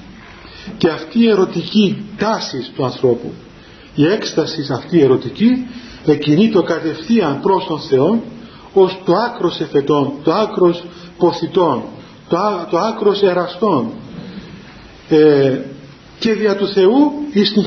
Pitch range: 145-190 Hz